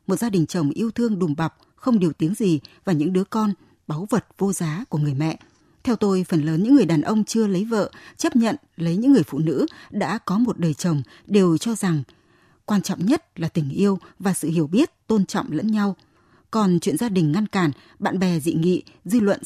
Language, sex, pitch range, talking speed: Vietnamese, female, 165-220 Hz, 230 wpm